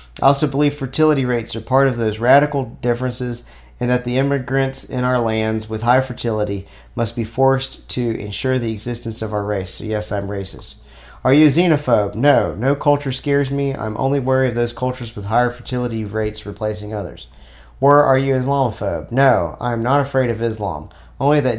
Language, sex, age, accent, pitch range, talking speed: English, male, 40-59, American, 100-130 Hz, 190 wpm